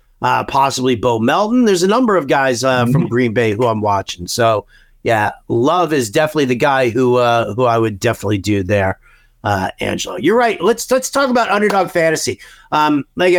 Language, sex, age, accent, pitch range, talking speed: English, male, 50-69, American, 145-195 Hz, 195 wpm